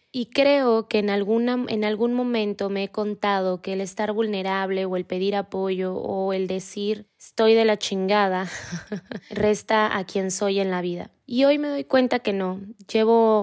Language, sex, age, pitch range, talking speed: Spanish, female, 20-39, 190-220 Hz, 180 wpm